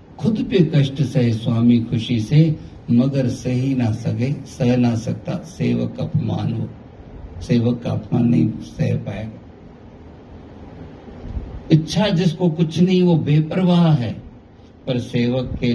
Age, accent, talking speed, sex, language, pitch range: 60-79, native, 120 wpm, male, Hindi, 105-145 Hz